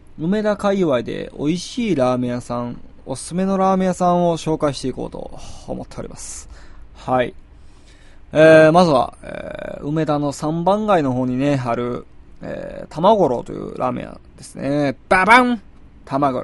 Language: Japanese